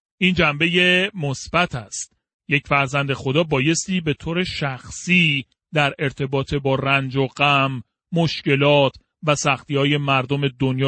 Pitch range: 140-190 Hz